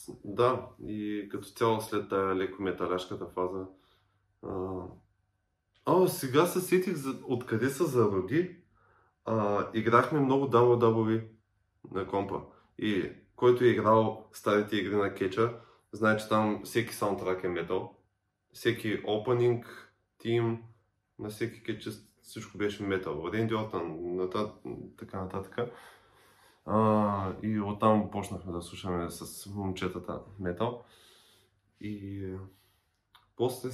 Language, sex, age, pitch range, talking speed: Bulgarian, male, 20-39, 95-110 Hz, 105 wpm